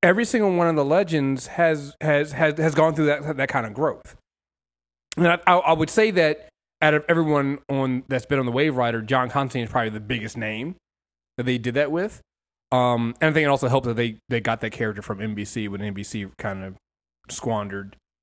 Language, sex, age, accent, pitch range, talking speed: English, male, 20-39, American, 115-160 Hz, 215 wpm